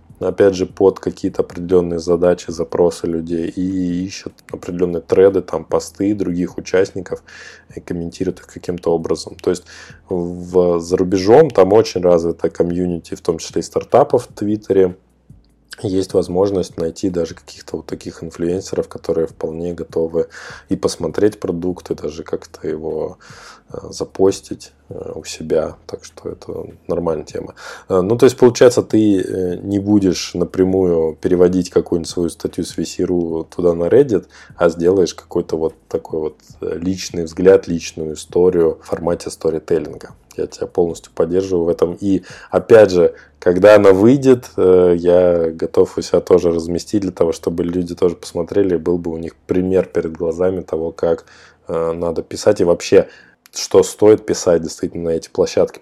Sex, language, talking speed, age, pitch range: male, Russian, 145 wpm, 20-39, 85-95 Hz